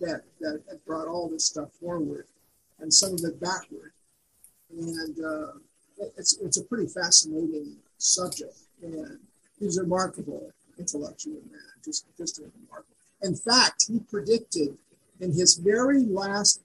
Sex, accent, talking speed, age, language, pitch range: male, American, 135 wpm, 50-69, English, 170-210 Hz